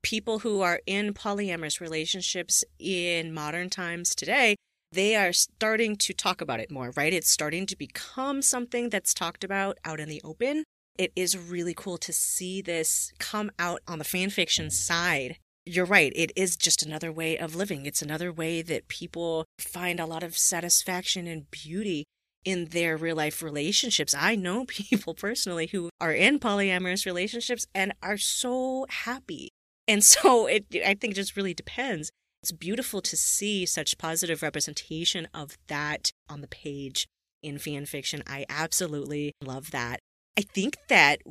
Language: English